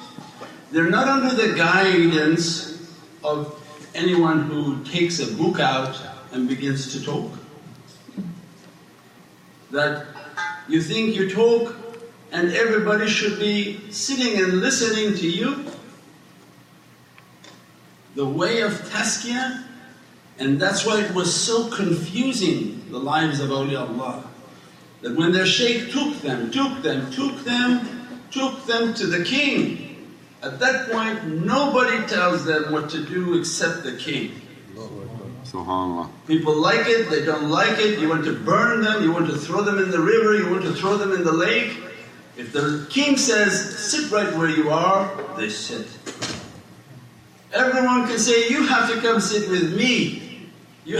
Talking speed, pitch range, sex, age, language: 145 wpm, 155-230 Hz, male, 60-79, English